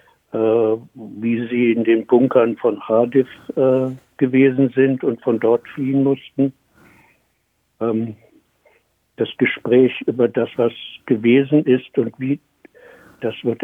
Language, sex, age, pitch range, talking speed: German, male, 60-79, 115-130 Hz, 120 wpm